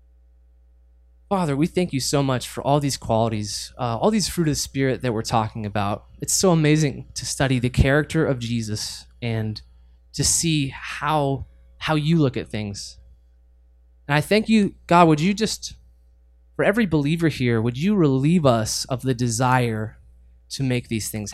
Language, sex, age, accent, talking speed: English, male, 20-39, American, 175 wpm